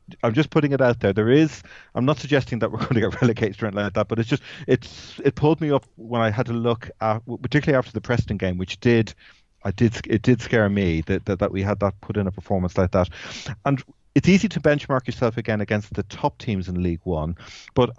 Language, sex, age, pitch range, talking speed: English, male, 30-49, 100-125 Hz, 250 wpm